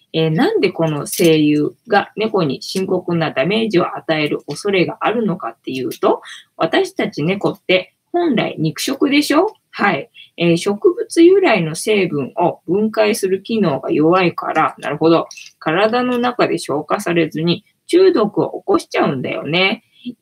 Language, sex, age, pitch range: Japanese, female, 20-39, 165-240 Hz